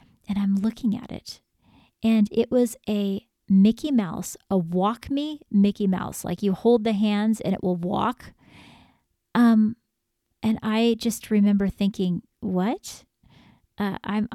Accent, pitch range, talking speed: American, 195-230 Hz, 140 wpm